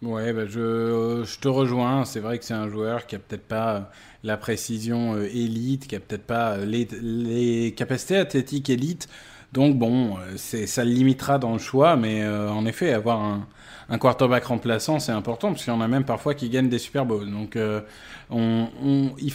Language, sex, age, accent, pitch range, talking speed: French, male, 20-39, French, 115-150 Hz, 215 wpm